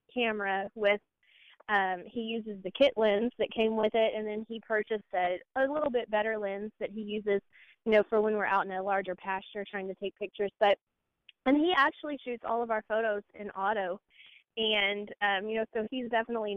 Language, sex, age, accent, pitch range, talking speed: English, female, 20-39, American, 200-230 Hz, 205 wpm